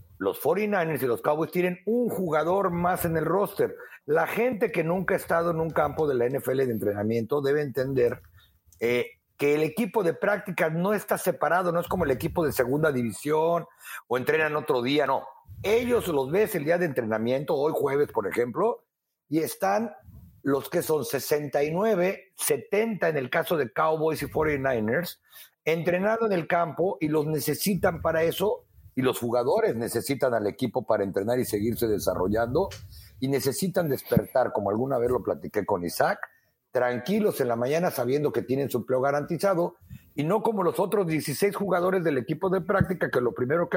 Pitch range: 130-185 Hz